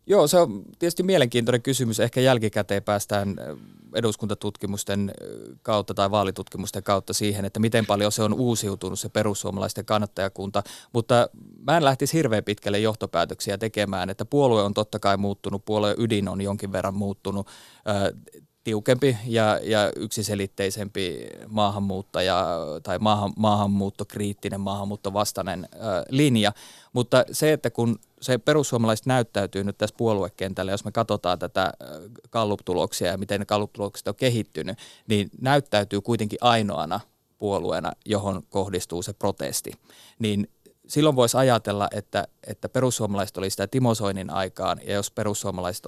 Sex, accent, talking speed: male, native, 130 wpm